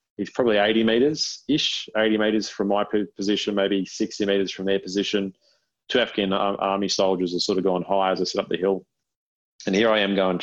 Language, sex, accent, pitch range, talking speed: English, male, Australian, 95-105 Hz, 220 wpm